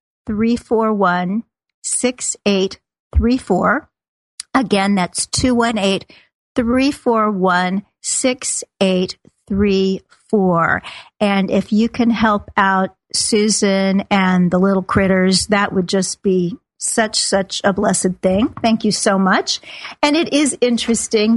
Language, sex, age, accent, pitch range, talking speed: English, female, 50-69, American, 195-235 Hz, 130 wpm